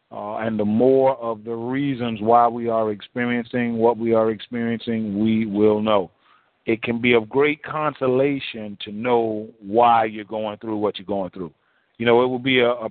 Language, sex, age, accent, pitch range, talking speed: English, male, 40-59, American, 115-135 Hz, 185 wpm